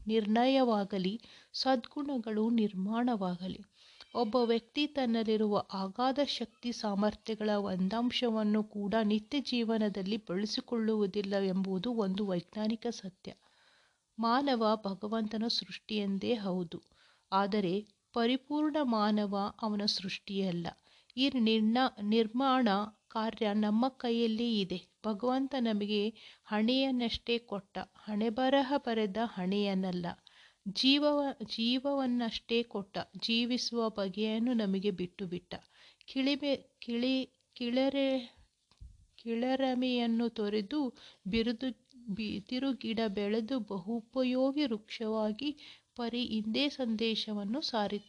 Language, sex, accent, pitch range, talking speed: Kannada, female, native, 205-245 Hz, 80 wpm